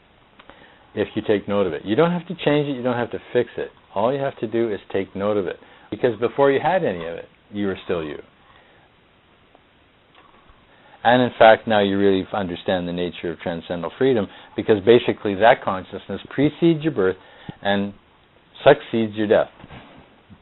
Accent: American